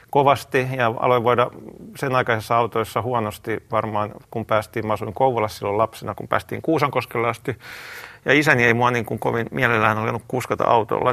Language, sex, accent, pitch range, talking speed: Finnish, male, native, 110-130 Hz, 165 wpm